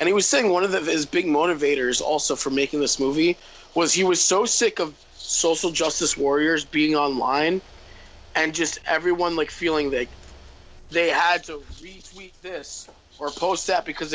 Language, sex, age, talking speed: English, male, 20-39, 175 wpm